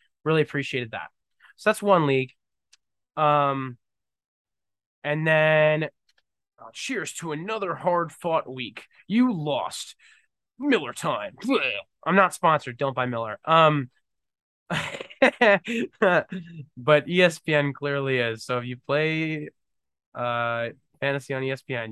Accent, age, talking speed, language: American, 20-39, 110 wpm, English